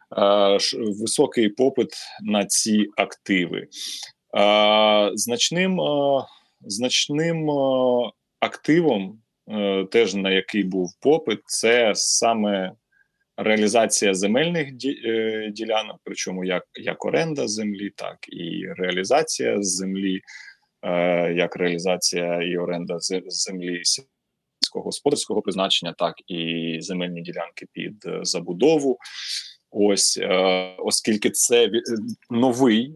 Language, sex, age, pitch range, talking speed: Ukrainian, male, 20-39, 95-115 Hz, 85 wpm